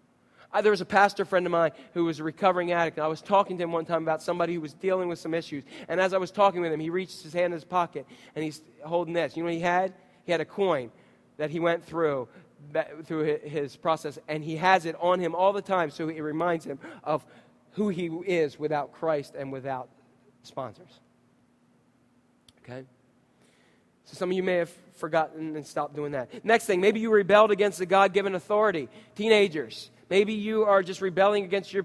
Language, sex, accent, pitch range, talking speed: English, male, American, 160-205 Hz, 210 wpm